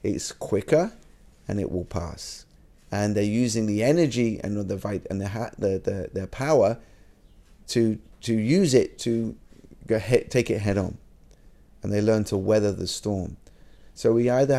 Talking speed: 160 wpm